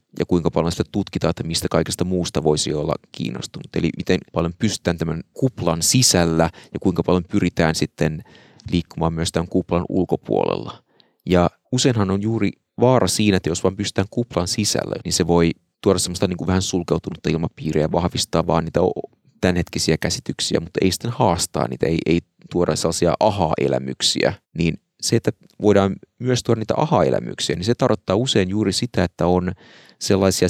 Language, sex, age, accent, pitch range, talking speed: Finnish, male, 30-49, native, 85-115 Hz, 155 wpm